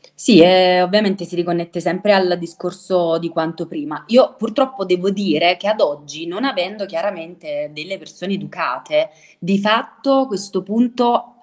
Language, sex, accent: Italian, female, native